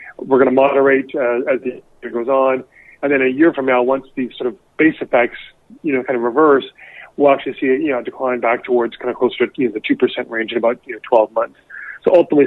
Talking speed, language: 260 wpm, English